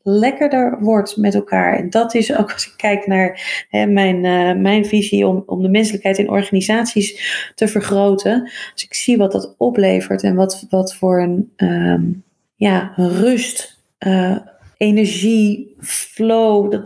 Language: Dutch